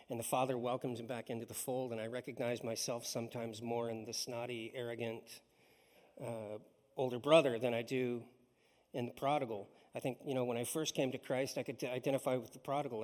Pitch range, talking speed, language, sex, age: 120-145 Hz, 205 wpm, English, male, 40-59